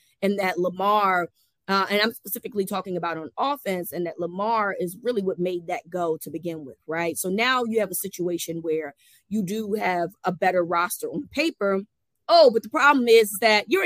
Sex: female